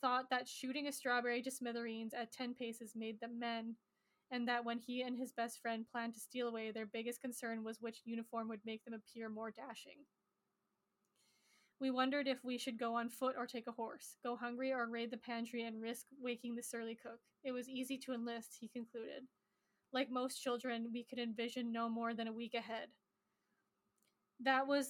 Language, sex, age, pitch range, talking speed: English, female, 10-29, 230-255 Hz, 200 wpm